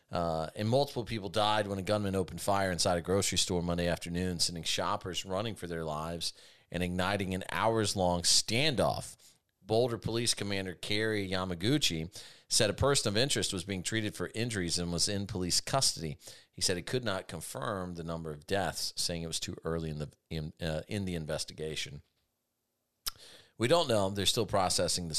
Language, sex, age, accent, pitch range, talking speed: English, male, 40-59, American, 80-105 Hz, 180 wpm